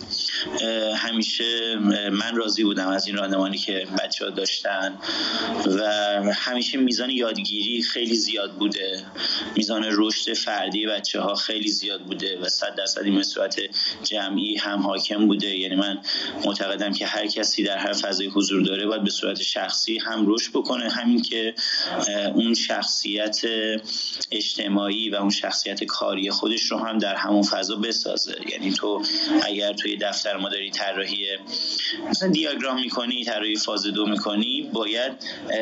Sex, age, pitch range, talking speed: male, 30-49, 100-115 Hz, 140 wpm